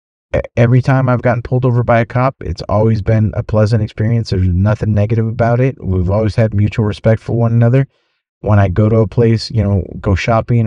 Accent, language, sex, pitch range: American, English, male, 100-130 Hz